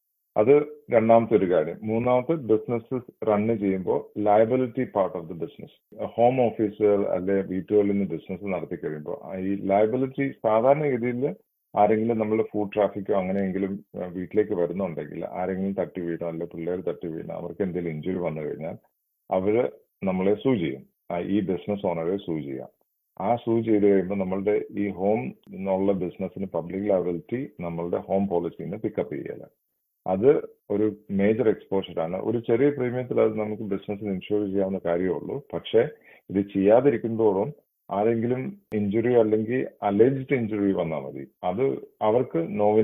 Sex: male